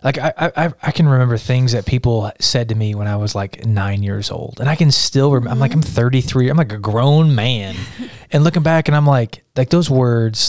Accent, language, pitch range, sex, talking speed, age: American, English, 105-130 Hz, male, 240 wpm, 20-39